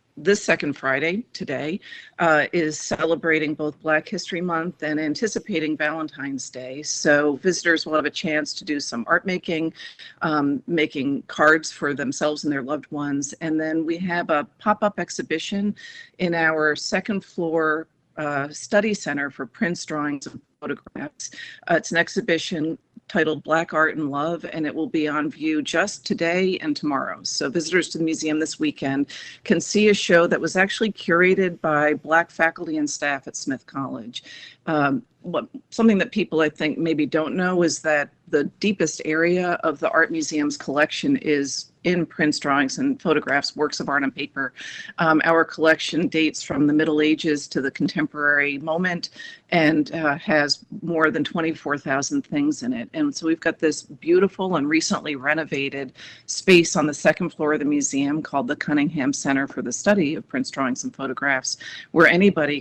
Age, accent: 50-69, American